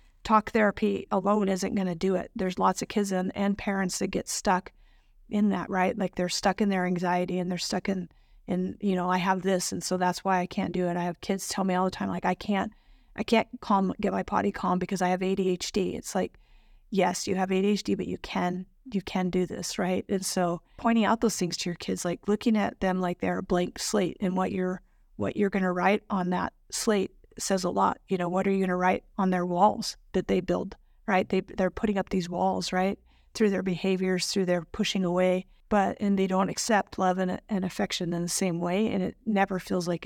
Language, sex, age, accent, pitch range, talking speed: English, female, 30-49, American, 180-200 Hz, 240 wpm